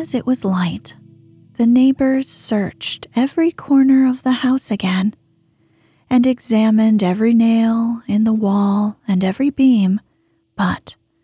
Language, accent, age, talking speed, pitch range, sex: English, American, 30-49, 125 wpm, 190-255 Hz, female